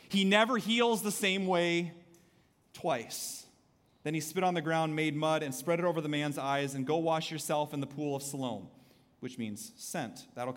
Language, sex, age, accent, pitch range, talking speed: English, male, 30-49, American, 155-195 Hz, 200 wpm